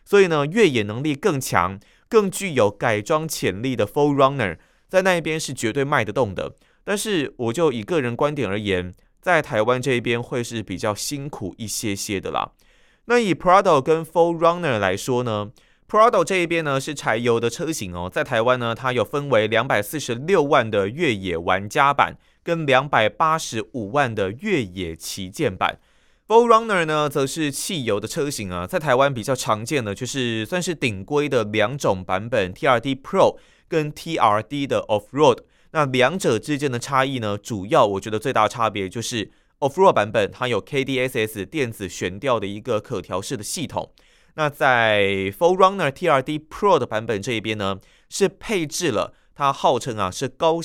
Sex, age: male, 20-39